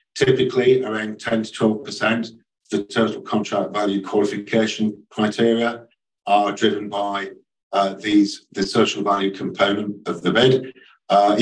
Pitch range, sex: 95-115 Hz, male